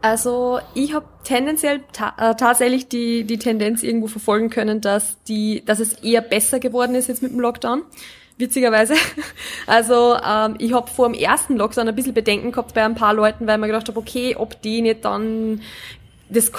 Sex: female